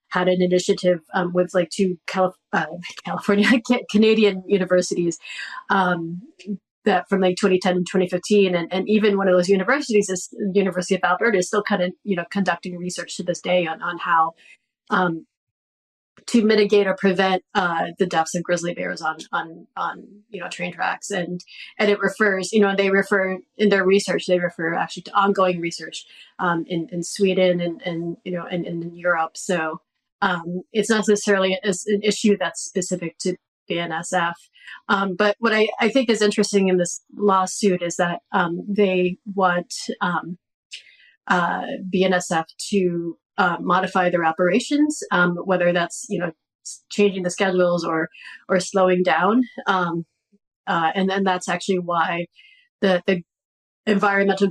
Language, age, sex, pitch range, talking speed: English, 30-49, female, 175-205 Hz, 165 wpm